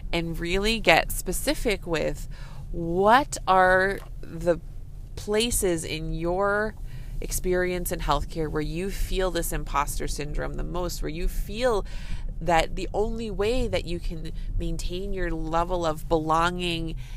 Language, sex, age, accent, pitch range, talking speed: English, female, 20-39, American, 155-195 Hz, 130 wpm